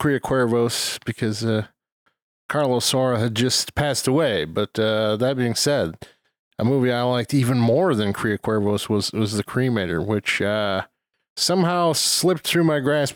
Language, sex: English, male